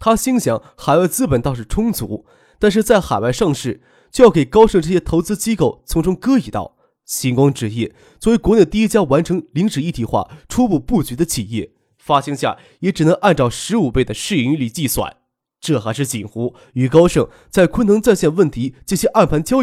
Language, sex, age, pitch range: Chinese, male, 20-39, 130-210 Hz